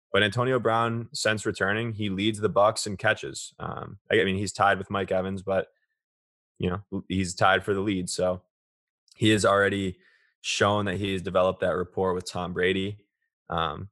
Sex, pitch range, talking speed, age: male, 90-100 Hz, 180 wpm, 20-39